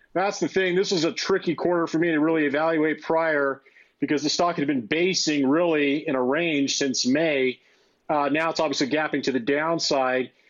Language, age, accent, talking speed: English, 40-59, American, 195 wpm